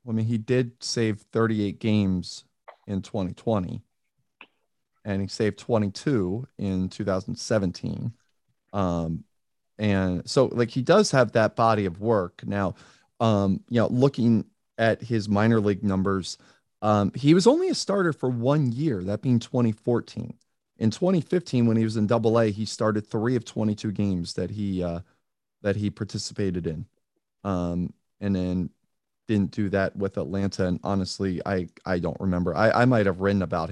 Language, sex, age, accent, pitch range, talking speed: English, male, 30-49, American, 95-115 Hz, 160 wpm